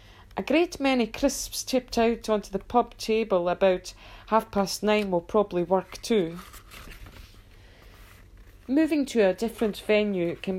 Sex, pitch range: female, 170-215 Hz